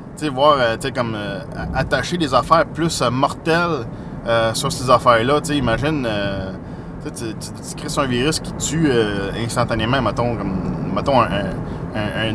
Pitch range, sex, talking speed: 125-160 Hz, male, 155 wpm